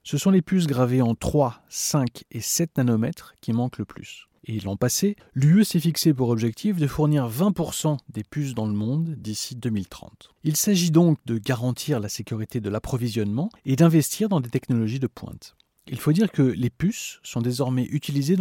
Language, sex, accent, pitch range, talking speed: French, male, French, 115-160 Hz, 190 wpm